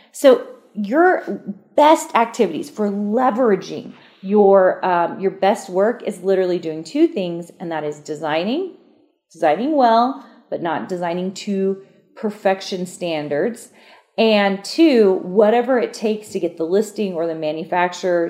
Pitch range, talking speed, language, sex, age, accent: 175-225 Hz, 130 wpm, English, female, 30-49, American